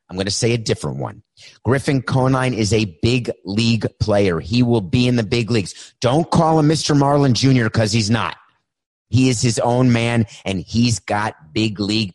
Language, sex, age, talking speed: English, male, 30-49, 200 wpm